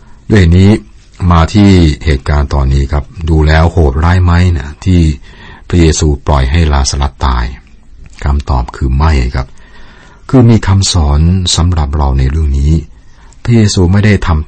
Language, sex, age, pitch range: Thai, male, 60-79, 70-90 Hz